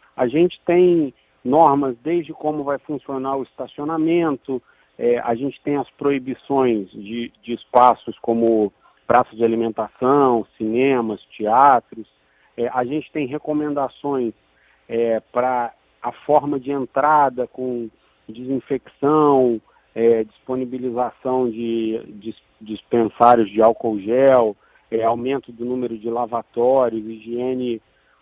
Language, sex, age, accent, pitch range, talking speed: Portuguese, male, 40-59, Brazilian, 120-170 Hz, 115 wpm